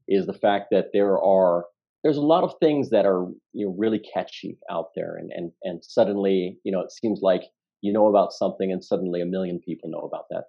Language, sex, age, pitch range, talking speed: English, male, 40-59, 90-110 Hz, 230 wpm